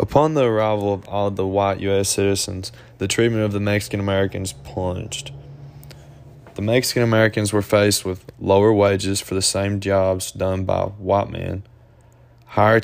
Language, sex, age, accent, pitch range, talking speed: English, male, 10-29, American, 95-115 Hz, 145 wpm